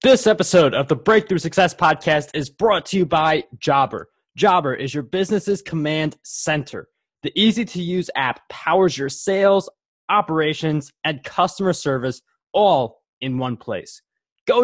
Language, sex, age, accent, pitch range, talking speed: English, male, 20-39, American, 140-195 Hz, 140 wpm